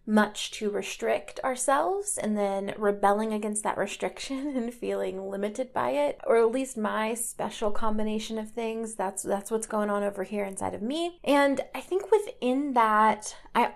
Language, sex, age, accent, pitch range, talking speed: English, female, 20-39, American, 205-270 Hz, 170 wpm